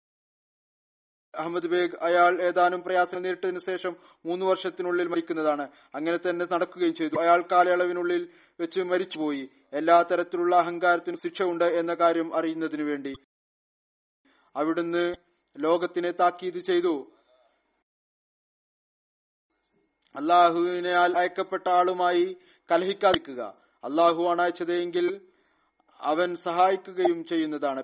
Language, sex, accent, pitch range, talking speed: Malayalam, male, native, 170-180 Hz, 80 wpm